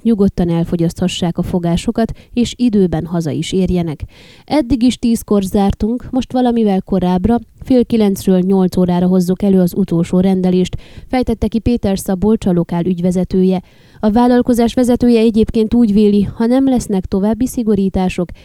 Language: Hungarian